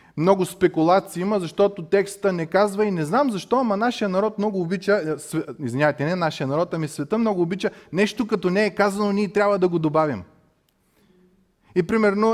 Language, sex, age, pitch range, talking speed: Bulgarian, male, 30-49, 135-195 Hz, 175 wpm